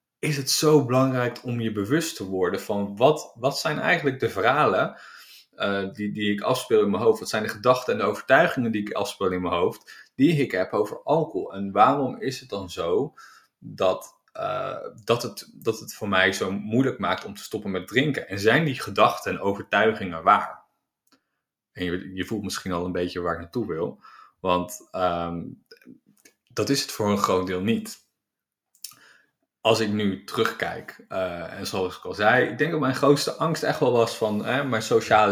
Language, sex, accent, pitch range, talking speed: Dutch, male, Dutch, 95-125 Hz, 190 wpm